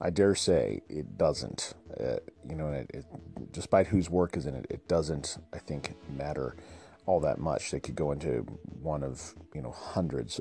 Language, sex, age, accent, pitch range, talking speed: English, male, 40-59, American, 70-85 Hz, 190 wpm